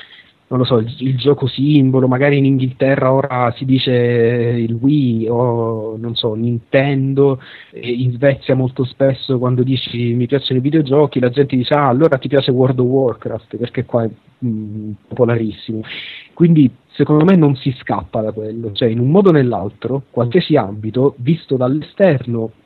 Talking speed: 170 wpm